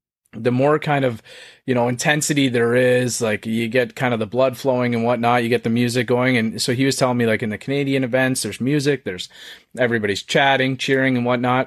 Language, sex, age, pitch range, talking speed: English, male, 30-49, 110-130 Hz, 220 wpm